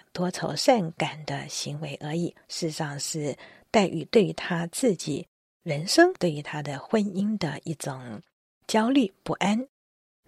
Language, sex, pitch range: Chinese, female, 155-215 Hz